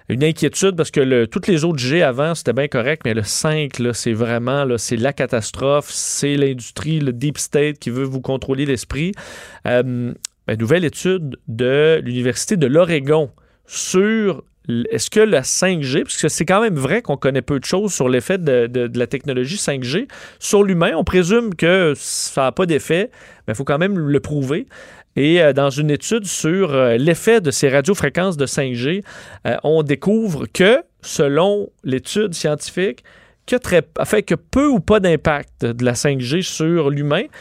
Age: 30-49